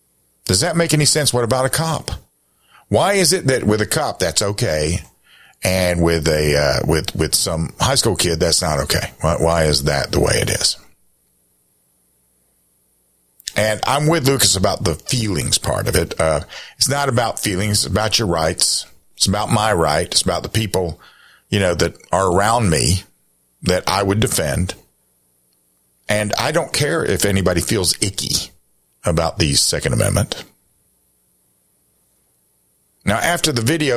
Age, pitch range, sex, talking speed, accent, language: 50-69, 80-120 Hz, male, 165 wpm, American, English